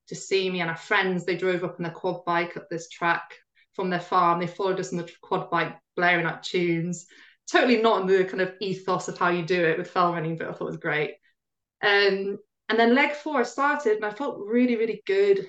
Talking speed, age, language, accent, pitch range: 250 wpm, 20-39, English, British, 170-205 Hz